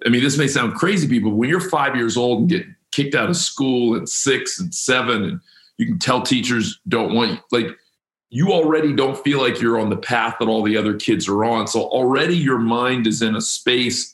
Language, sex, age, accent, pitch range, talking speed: English, male, 40-59, American, 110-145 Hz, 235 wpm